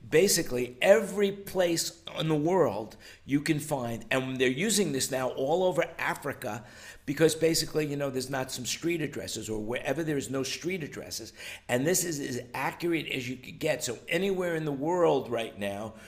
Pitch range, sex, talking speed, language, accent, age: 115-150 Hz, male, 180 wpm, English, American, 50-69